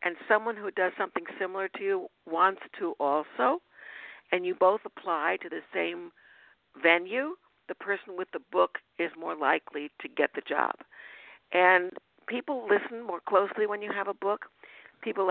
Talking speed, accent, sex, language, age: 165 wpm, American, female, English, 60-79